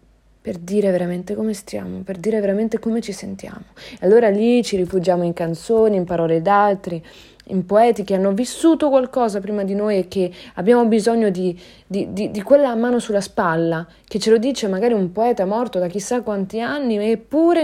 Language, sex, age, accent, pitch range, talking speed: Italian, female, 30-49, native, 180-235 Hz, 185 wpm